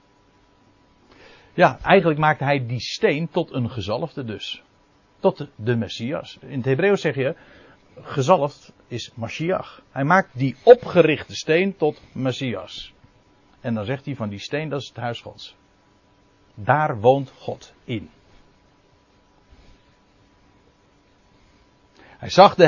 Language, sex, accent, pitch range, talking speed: Dutch, male, Dutch, 105-155 Hz, 125 wpm